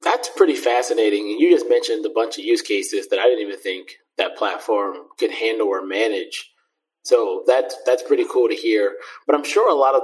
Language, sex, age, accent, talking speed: English, male, 20-39, American, 205 wpm